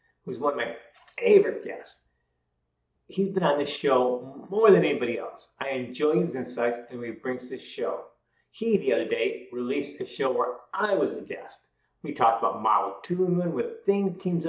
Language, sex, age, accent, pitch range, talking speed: English, male, 50-69, American, 120-200 Hz, 180 wpm